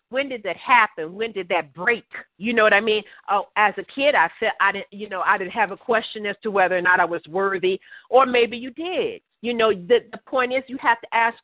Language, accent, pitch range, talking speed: English, American, 210-260 Hz, 260 wpm